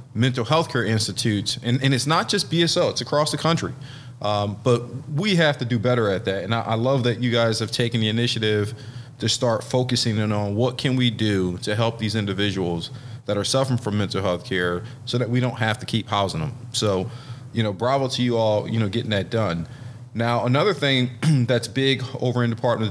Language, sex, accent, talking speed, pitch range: English, male, American, 220 wpm, 105-125 Hz